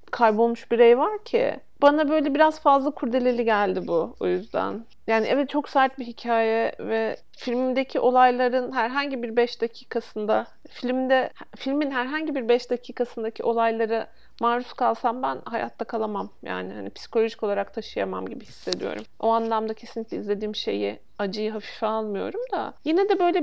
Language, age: Turkish, 40-59